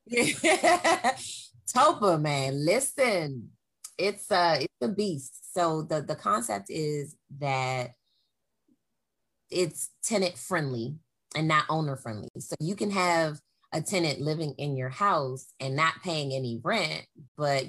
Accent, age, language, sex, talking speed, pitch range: American, 20-39, English, female, 125 wpm, 135-165 Hz